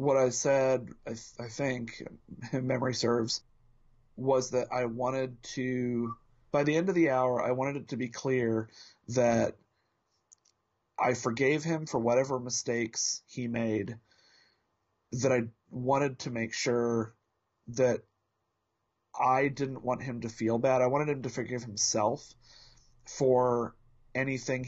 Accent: American